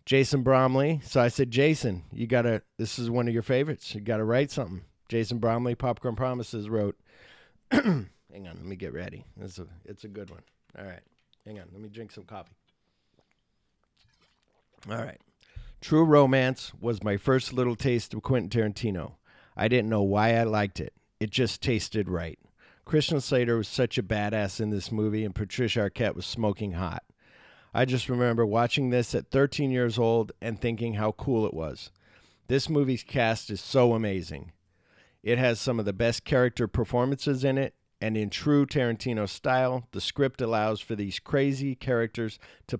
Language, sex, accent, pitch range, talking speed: English, male, American, 105-125 Hz, 180 wpm